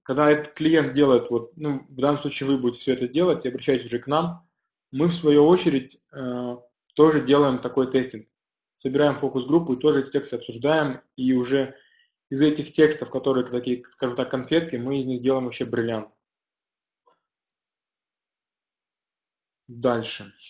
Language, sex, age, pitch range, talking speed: Russian, male, 20-39, 125-155 Hz, 150 wpm